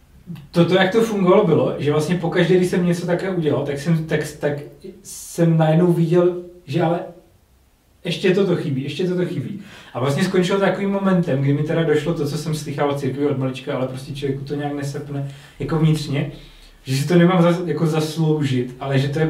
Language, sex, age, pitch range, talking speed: Czech, male, 30-49, 140-170 Hz, 200 wpm